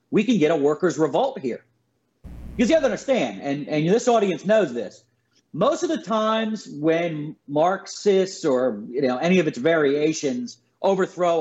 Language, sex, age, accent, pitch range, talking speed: English, male, 40-59, American, 175-240 Hz, 170 wpm